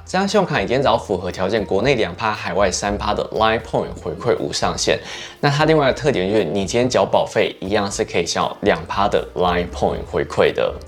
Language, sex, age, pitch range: Chinese, male, 20-39, 95-130 Hz